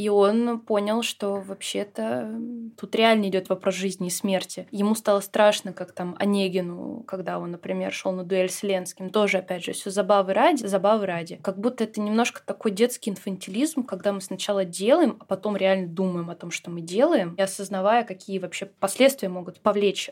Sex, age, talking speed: female, 20-39, 180 wpm